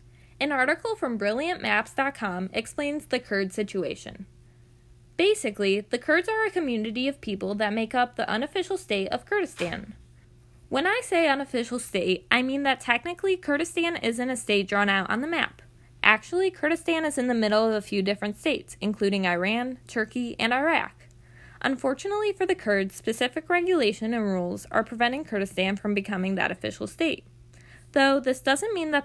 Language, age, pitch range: English, 10-29, 195-280 Hz